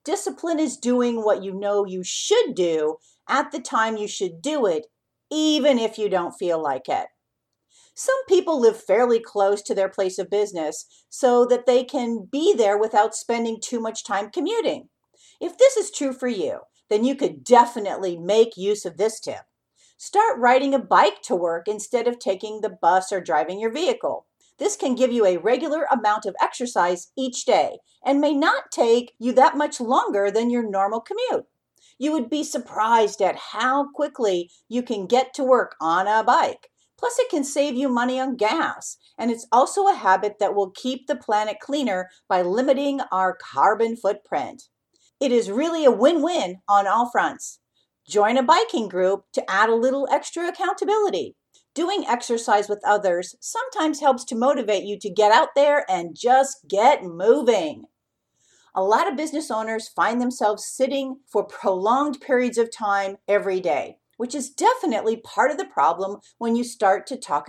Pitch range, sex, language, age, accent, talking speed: 205-290 Hz, female, English, 50-69, American, 175 wpm